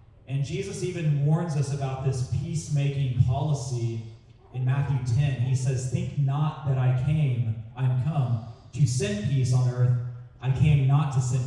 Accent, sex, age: American, male, 30-49